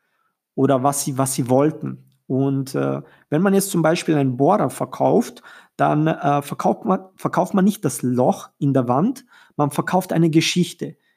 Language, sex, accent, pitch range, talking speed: German, male, German, 135-165 Hz, 170 wpm